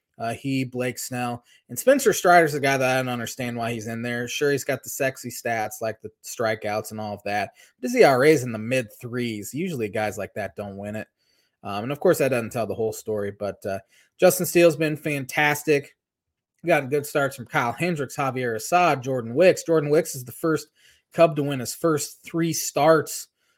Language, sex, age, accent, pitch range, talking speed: English, male, 20-39, American, 110-145 Hz, 215 wpm